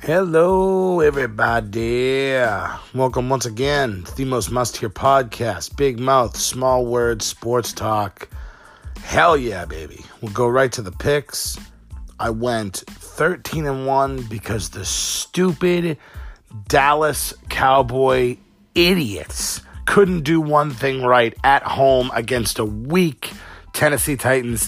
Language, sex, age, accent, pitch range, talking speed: English, male, 40-59, American, 115-145 Hz, 115 wpm